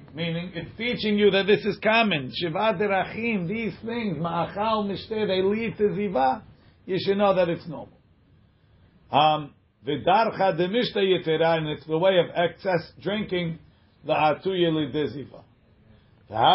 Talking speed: 145 wpm